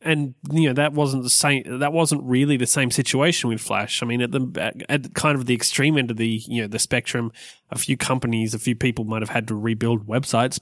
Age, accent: 20-39, Australian